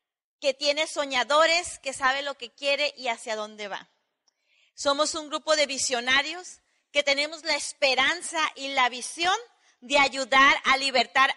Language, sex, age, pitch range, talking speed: Spanish, female, 30-49, 255-330 Hz, 150 wpm